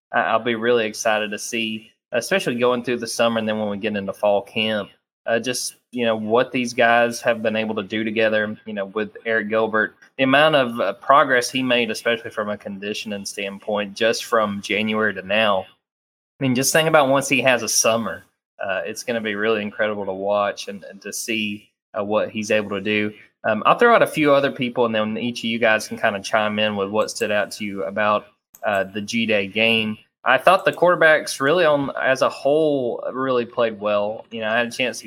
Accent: American